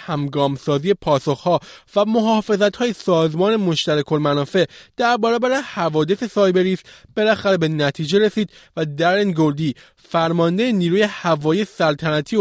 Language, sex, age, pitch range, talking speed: Persian, male, 20-39, 155-205 Hz, 110 wpm